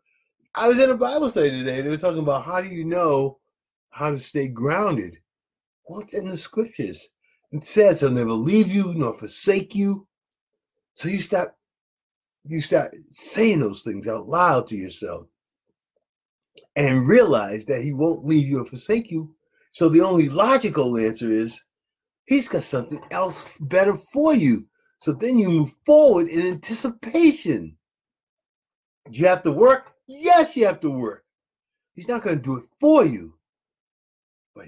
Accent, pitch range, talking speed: American, 130-220 Hz, 165 wpm